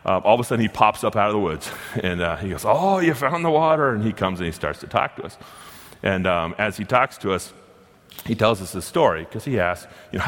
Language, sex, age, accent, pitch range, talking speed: English, male, 30-49, American, 95-115 Hz, 280 wpm